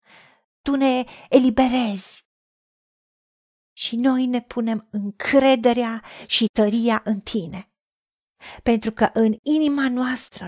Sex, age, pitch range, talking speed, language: female, 40-59, 230-285 Hz, 95 wpm, Romanian